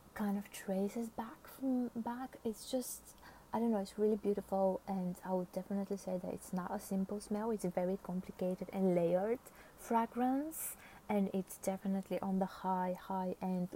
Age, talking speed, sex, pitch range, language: 20-39, 170 wpm, female, 175-205 Hz, English